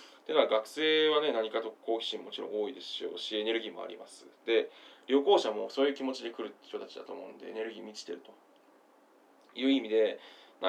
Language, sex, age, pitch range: Japanese, male, 20-39, 115-165 Hz